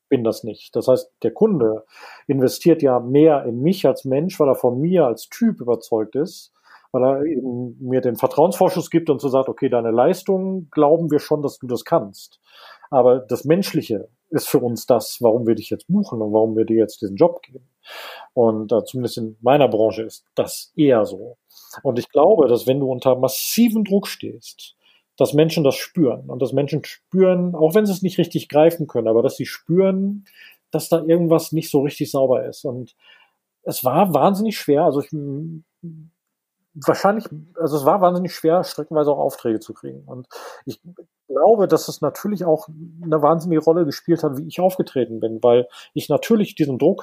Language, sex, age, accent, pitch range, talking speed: German, male, 40-59, German, 130-175 Hz, 190 wpm